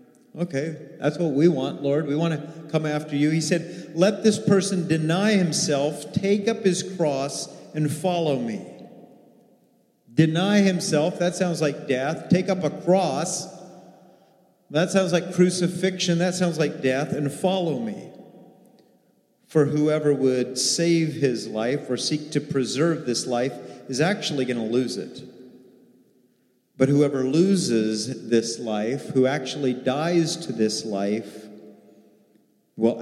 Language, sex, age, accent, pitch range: Japanese, male, 40-59, American, 125-170 Hz